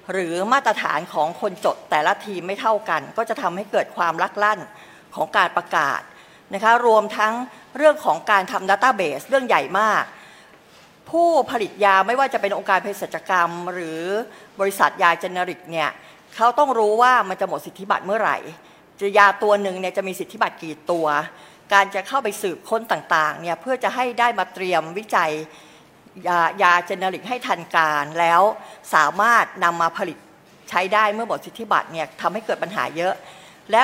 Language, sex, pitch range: Thai, female, 175-220 Hz